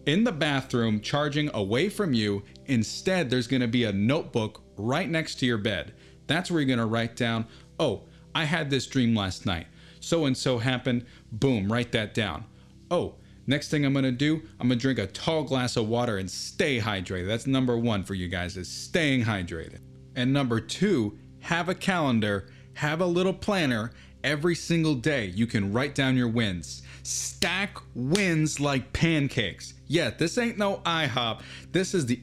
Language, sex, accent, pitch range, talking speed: English, male, American, 110-150 Hz, 185 wpm